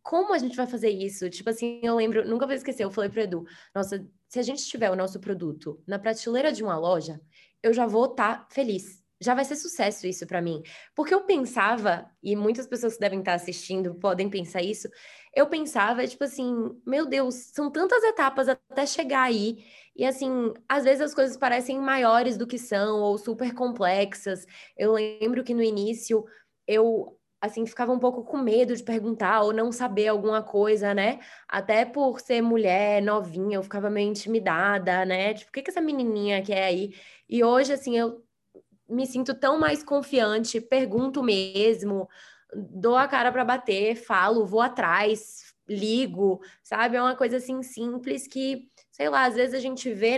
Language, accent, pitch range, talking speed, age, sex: Portuguese, Brazilian, 205-255 Hz, 185 wpm, 20-39, female